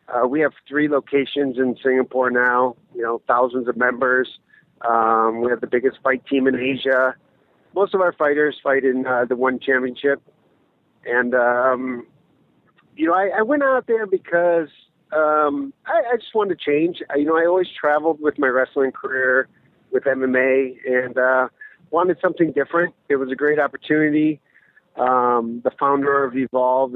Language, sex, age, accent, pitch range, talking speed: English, male, 50-69, American, 125-155 Hz, 165 wpm